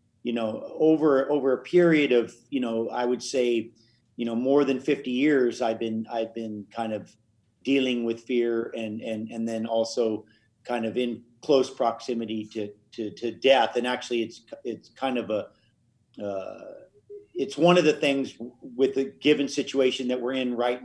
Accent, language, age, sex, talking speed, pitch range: American, English, 40-59, male, 180 wpm, 115-135 Hz